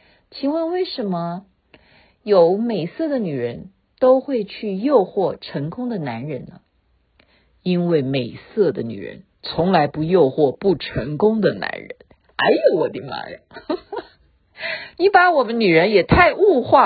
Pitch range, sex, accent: 165-255 Hz, female, native